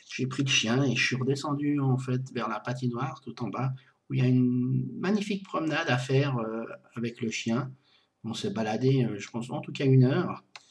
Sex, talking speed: male, 215 wpm